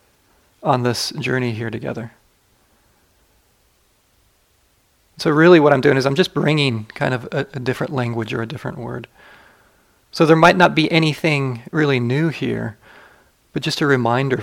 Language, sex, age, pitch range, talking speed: English, male, 30-49, 120-150 Hz, 155 wpm